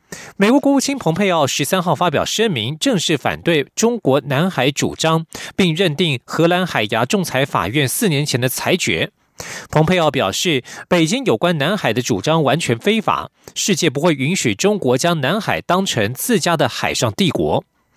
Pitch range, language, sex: 135-190 Hz, German, male